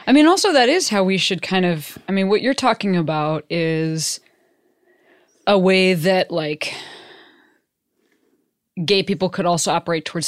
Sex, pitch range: female, 170-260 Hz